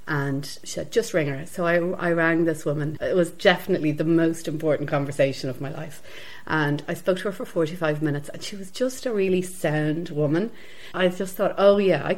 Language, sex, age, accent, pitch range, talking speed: English, female, 40-59, Irish, 145-175 Hz, 215 wpm